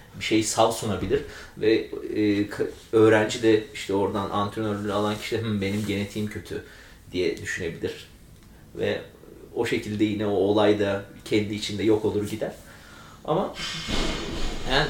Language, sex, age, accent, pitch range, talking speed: Turkish, male, 30-49, native, 105-140 Hz, 130 wpm